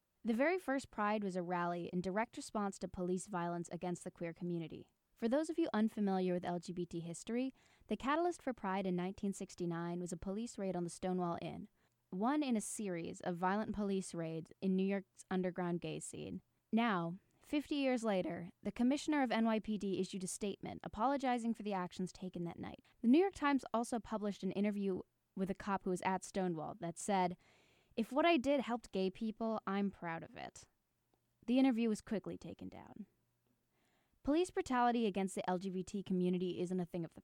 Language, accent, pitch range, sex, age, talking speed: English, American, 180-235 Hz, female, 10-29, 185 wpm